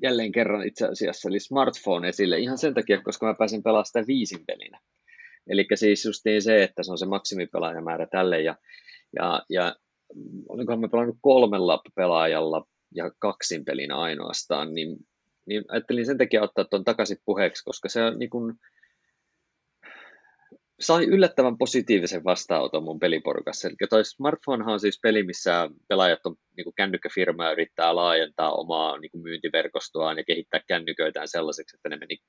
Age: 30-49